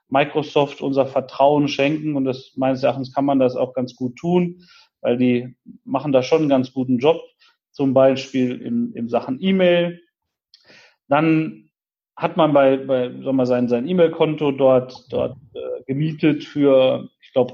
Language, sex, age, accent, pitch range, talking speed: German, male, 40-59, German, 135-165 Hz, 160 wpm